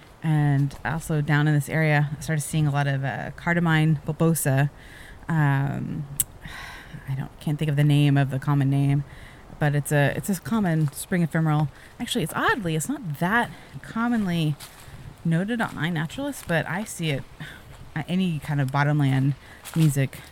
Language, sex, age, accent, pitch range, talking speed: English, female, 20-39, American, 140-165 Hz, 160 wpm